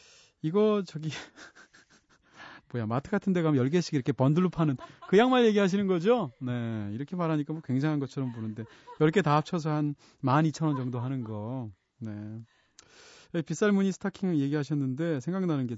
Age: 30-49